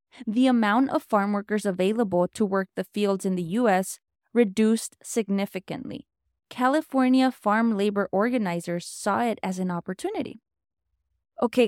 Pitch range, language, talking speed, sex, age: 195-250 Hz, English, 130 wpm, female, 20-39